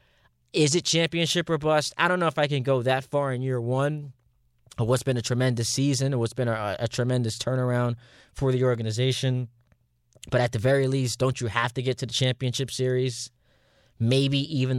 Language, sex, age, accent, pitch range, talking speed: English, male, 20-39, American, 115-130 Hz, 195 wpm